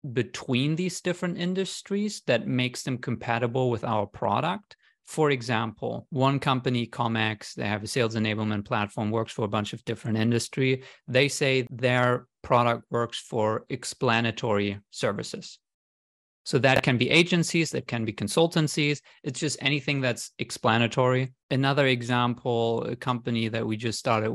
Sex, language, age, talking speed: male, English, 30-49, 145 wpm